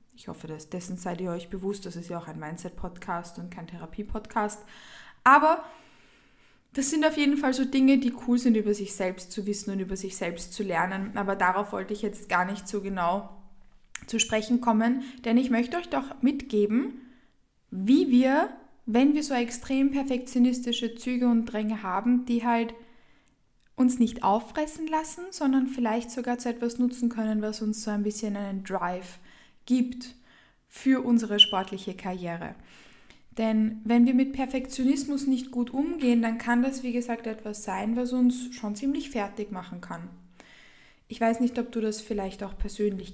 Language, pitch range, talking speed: German, 195-250 Hz, 170 wpm